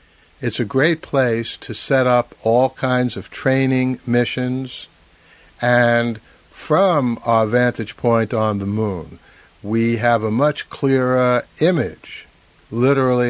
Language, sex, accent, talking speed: English, male, American, 120 wpm